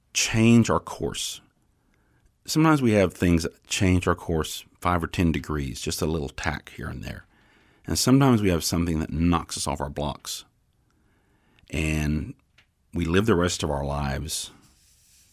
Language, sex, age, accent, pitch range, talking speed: English, male, 40-59, American, 75-95 Hz, 160 wpm